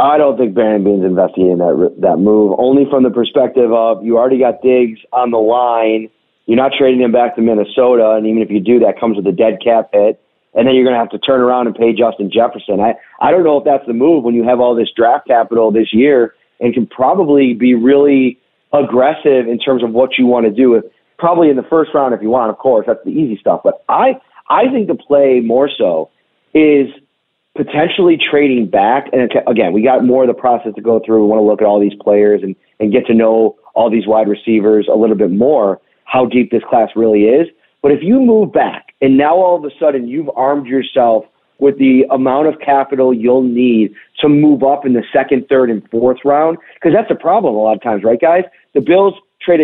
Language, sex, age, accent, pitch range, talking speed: English, male, 30-49, American, 110-140 Hz, 235 wpm